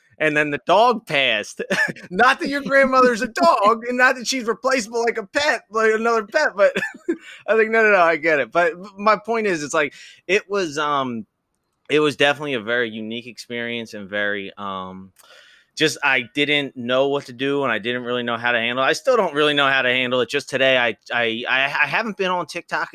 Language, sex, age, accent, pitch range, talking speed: English, male, 20-39, American, 115-180 Hz, 220 wpm